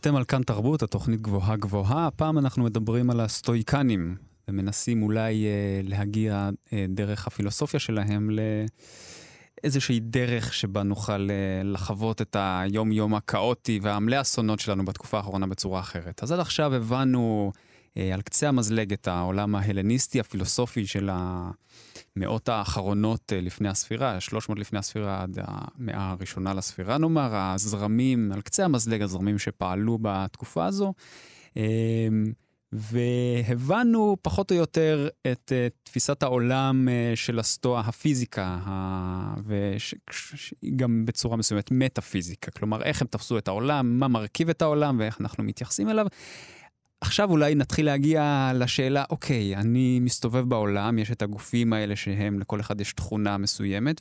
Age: 20-39